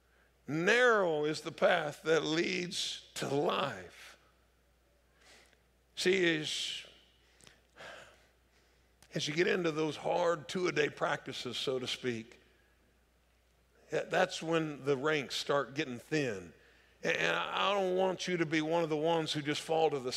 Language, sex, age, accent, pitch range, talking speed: English, male, 50-69, American, 150-225 Hz, 130 wpm